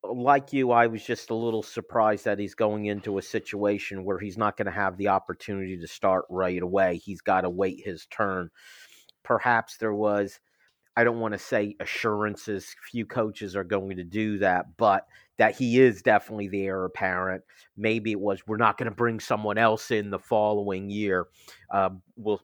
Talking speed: 190 wpm